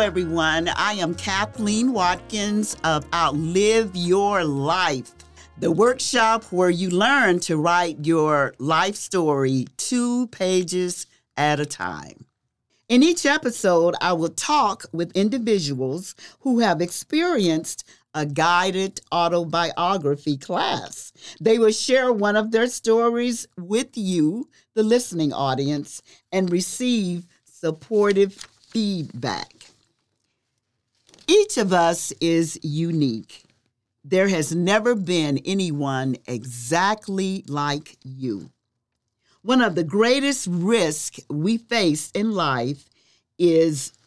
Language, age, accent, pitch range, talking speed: English, 50-69, American, 145-215 Hz, 105 wpm